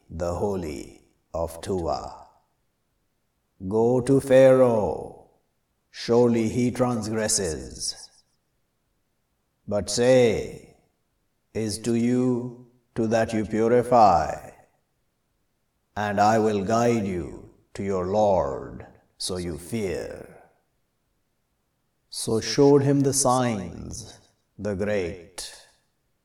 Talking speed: 85 wpm